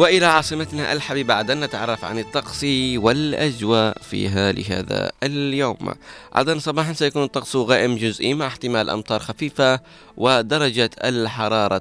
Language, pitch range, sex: Arabic, 110-140 Hz, male